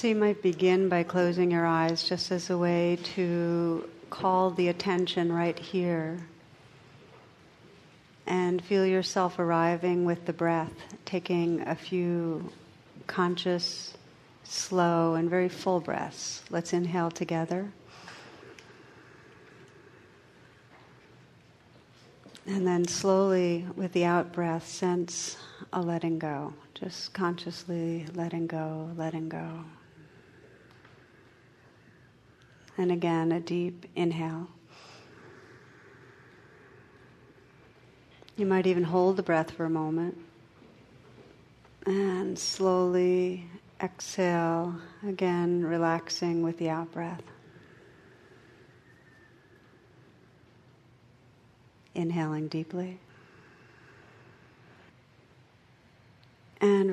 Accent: American